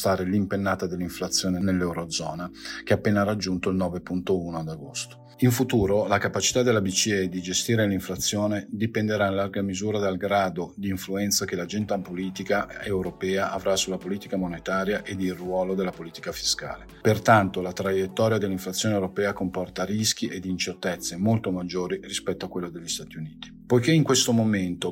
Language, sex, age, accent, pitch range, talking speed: Italian, male, 40-59, native, 95-110 Hz, 150 wpm